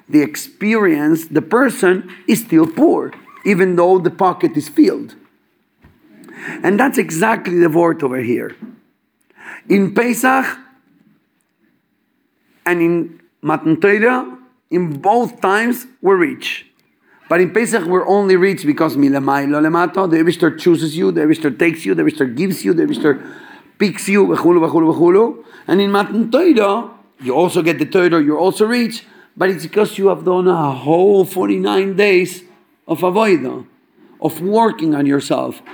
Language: English